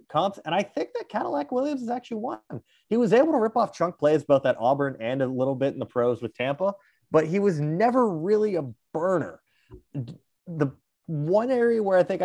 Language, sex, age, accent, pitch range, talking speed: English, male, 20-39, American, 115-160 Hz, 210 wpm